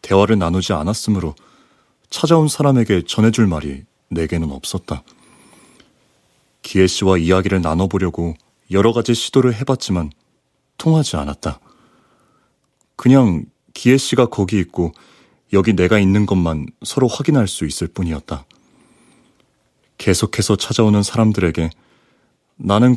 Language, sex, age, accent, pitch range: Korean, male, 30-49, native, 85-110 Hz